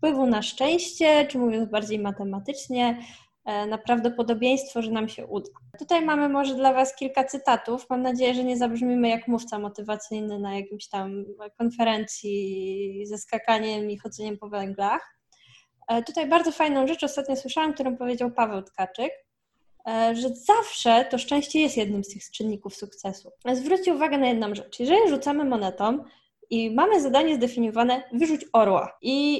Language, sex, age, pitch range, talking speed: Polish, female, 10-29, 225-285 Hz, 150 wpm